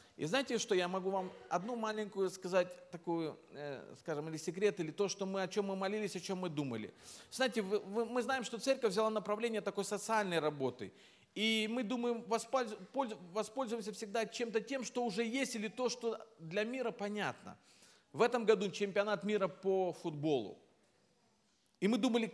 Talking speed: 160 wpm